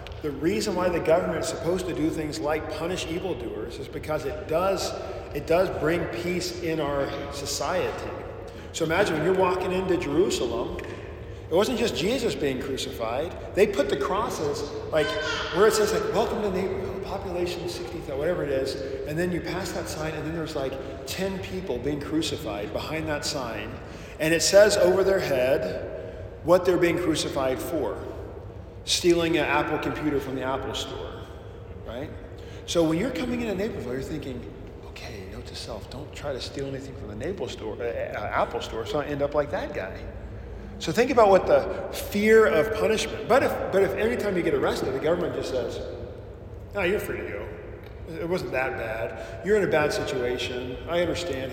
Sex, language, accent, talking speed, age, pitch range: male, English, American, 185 wpm, 40-59, 125-175 Hz